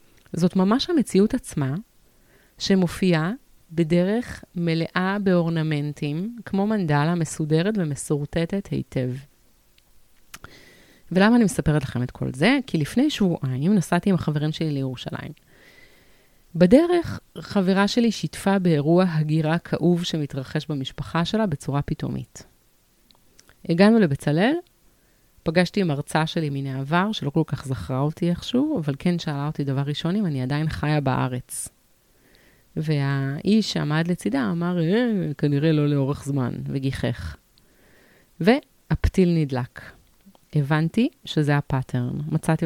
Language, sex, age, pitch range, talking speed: Hebrew, female, 30-49, 145-185 Hz, 115 wpm